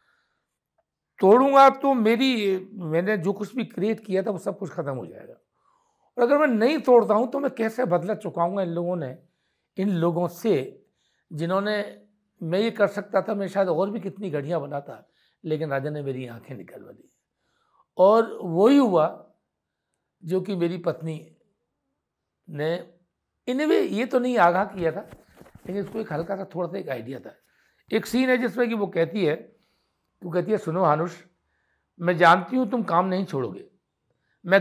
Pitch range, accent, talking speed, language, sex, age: 160-215 Hz, native, 170 wpm, Hindi, male, 60-79